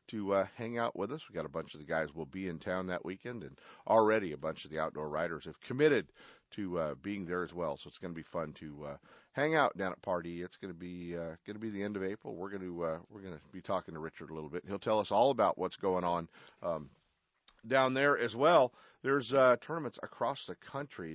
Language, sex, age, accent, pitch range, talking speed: English, male, 40-59, American, 85-115 Hz, 265 wpm